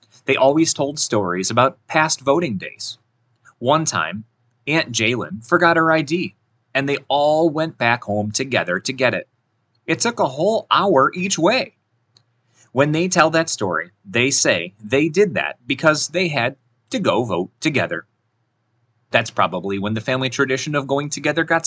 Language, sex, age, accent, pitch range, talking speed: English, male, 30-49, American, 115-155 Hz, 165 wpm